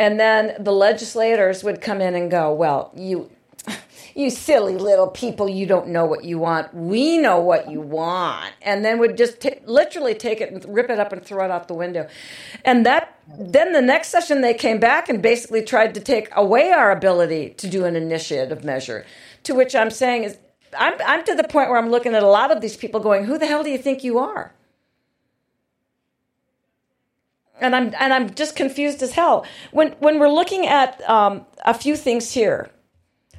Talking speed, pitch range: 205 wpm, 200-255 Hz